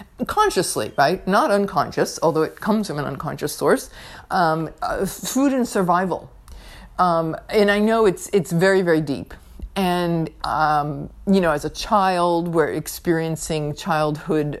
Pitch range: 150-175 Hz